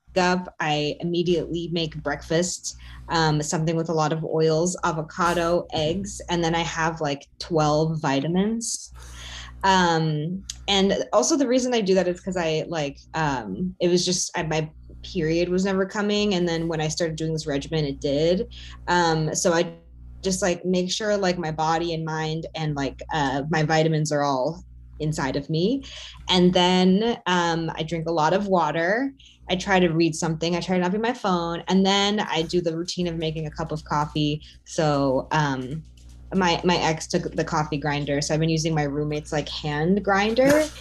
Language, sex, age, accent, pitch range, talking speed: English, female, 20-39, American, 155-180 Hz, 185 wpm